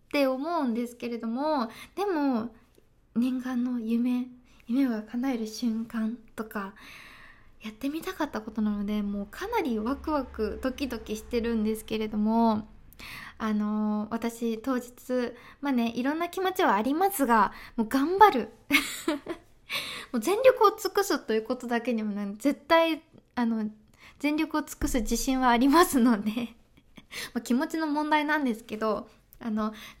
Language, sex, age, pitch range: Japanese, female, 20-39, 220-280 Hz